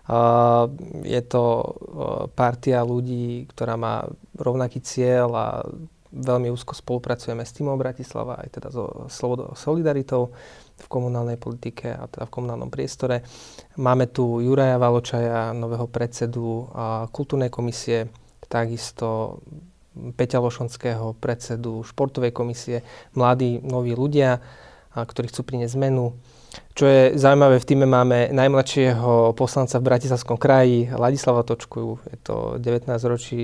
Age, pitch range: 30-49, 120-130 Hz